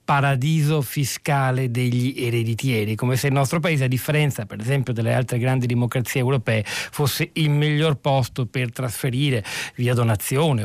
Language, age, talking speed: Italian, 40-59, 145 wpm